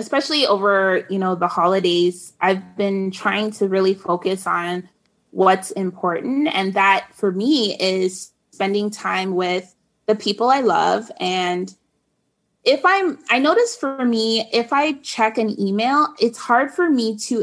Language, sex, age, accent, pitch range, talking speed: English, female, 20-39, American, 185-225 Hz, 150 wpm